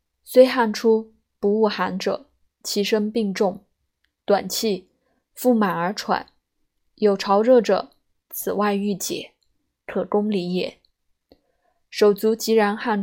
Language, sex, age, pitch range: Chinese, female, 20-39, 180-220 Hz